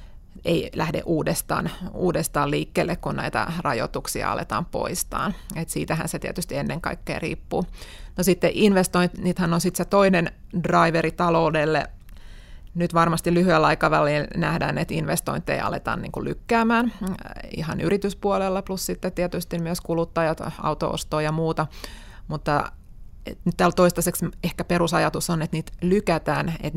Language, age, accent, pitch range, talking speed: Finnish, 30-49, native, 155-175 Hz, 125 wpm